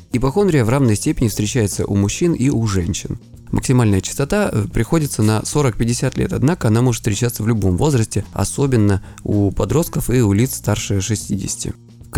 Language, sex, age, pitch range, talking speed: Russian, male, 20-39, 100-125 Hz, 160 wpm